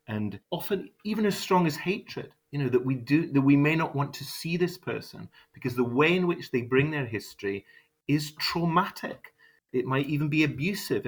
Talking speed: 200 wpm